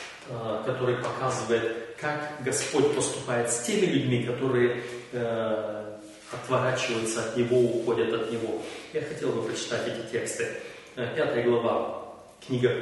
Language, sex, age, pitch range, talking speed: Russian, male, 30-49, 120-160 Hz, 115 wpm